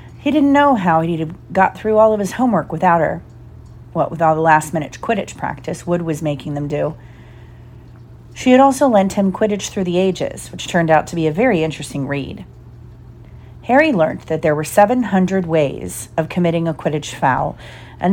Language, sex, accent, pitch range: English, female, American, 140-190 Hz